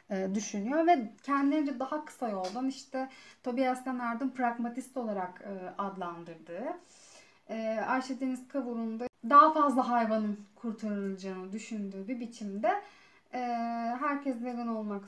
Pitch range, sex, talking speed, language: 210-275 Hz, female, 105 wpm, Turkish